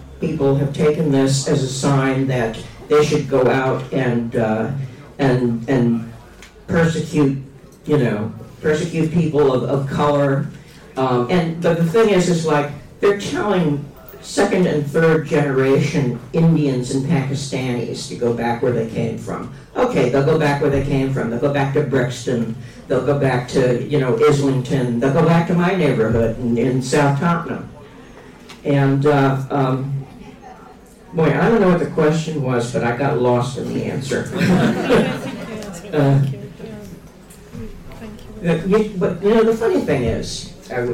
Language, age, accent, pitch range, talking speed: Italian, 60-79, American, 130-160 Hz, 150 wpm